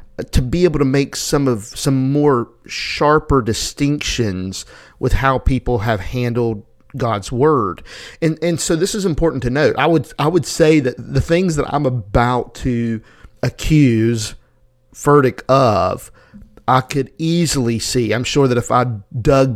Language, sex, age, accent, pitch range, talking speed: English, male, 50-69, American, 115-135 Hz, 155 wpm